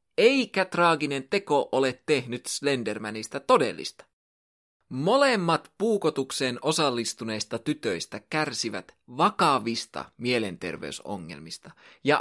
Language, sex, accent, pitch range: Finnish, male, native, 125-200 Hz